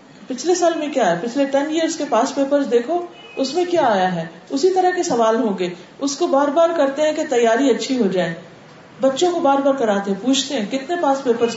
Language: Urdu